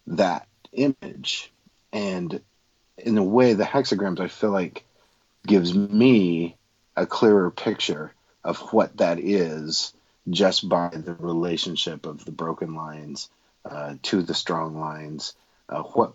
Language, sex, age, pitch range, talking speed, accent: English, male, 40-59, 85-105 Hz, 130 wpm, American